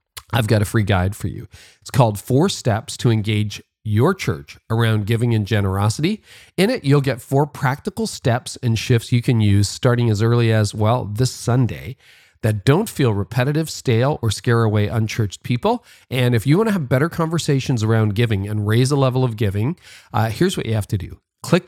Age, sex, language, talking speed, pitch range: 40-59, male, English, 200 wpm, 105-135 Hz